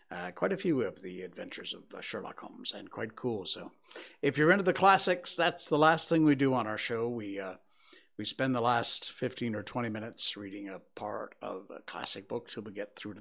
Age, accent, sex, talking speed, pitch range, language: 60-79, American, male, 230 wpm, 120-160 Hz, English